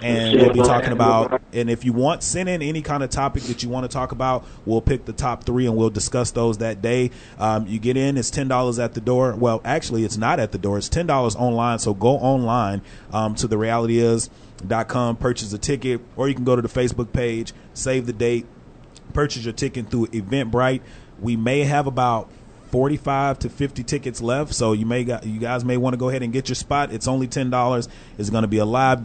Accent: American